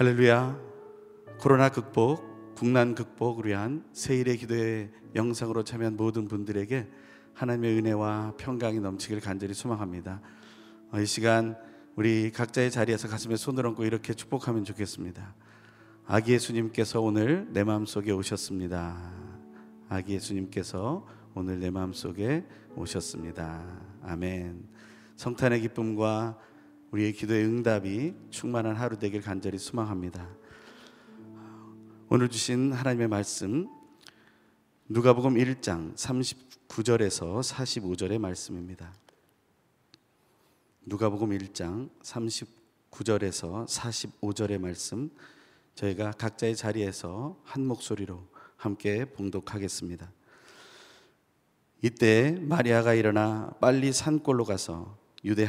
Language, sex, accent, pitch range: Korean, male, native, 100-120 Hz